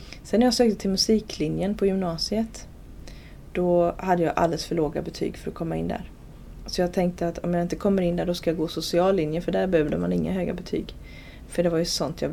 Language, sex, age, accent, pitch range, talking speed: Swedish, female, 30-49, native, 165-195 Hz, 235 wpm